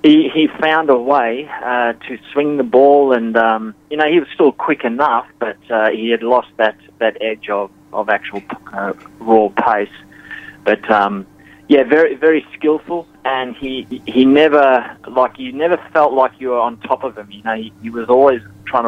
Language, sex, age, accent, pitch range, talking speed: English, male, 20-39, Australian, 105-130 Hz, 195 wpm